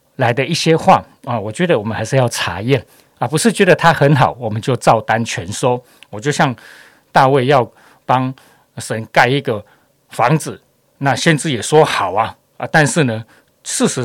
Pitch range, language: 115-145 Hz, Chinese